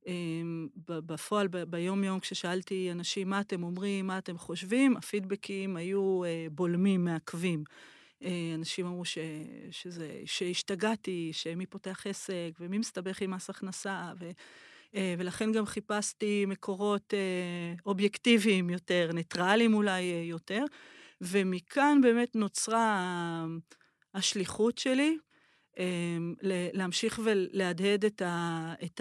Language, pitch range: Hebrew, 170-205 Hz